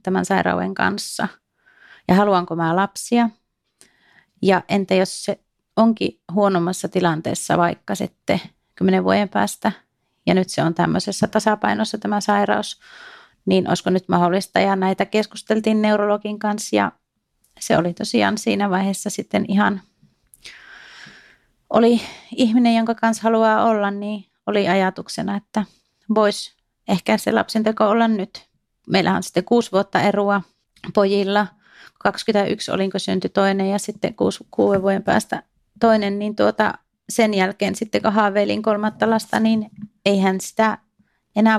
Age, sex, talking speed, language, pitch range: 30-49, female, 130 wpm, Finnish, 195-220 Hz